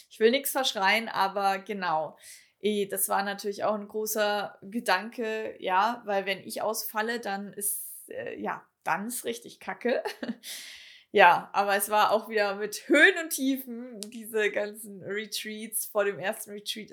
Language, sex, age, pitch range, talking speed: German, female, 20-39, 195-225 Hz, 155 wpm